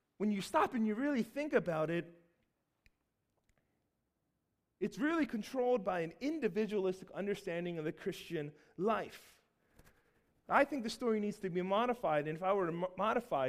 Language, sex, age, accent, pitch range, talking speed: English, male, 30-49, American, 165-215 Hz, 150 wpm